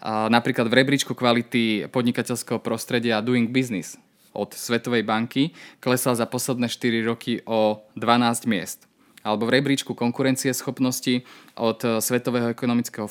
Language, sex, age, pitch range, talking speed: Slovak, male, 20-39, 115-130 Hz, 120 wpm